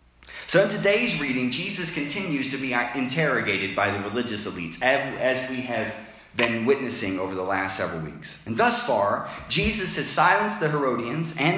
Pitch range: 115-175 Hz